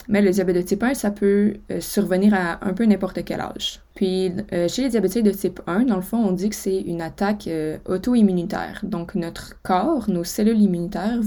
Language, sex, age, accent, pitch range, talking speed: French, female, 20-39, Canadian, 175-205 Hz, 220 wpm